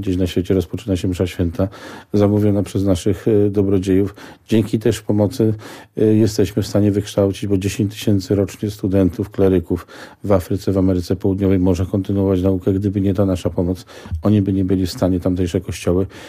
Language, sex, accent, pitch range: Polish, male, native, 95-105 Hz